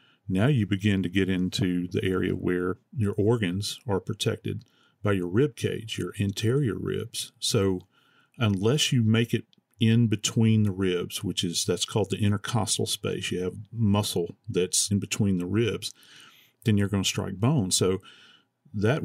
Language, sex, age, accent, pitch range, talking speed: English, male, 40-59, American, 95-115 Hz, 165 wpm